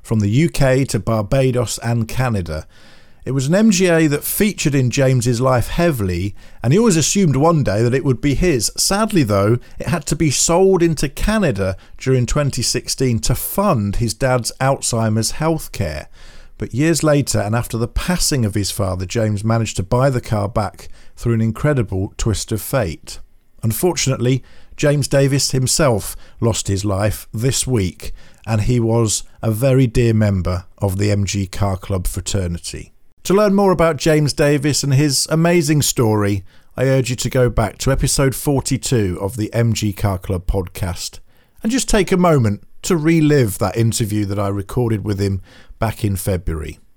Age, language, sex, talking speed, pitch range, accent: 50-69, English, male, 170 wpm, 100-145 Hz, British